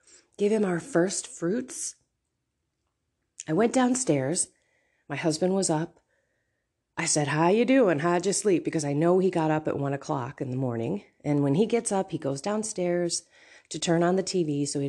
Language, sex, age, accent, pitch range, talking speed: English, female, 30-49, American, 145-205 Hz, 190 wpm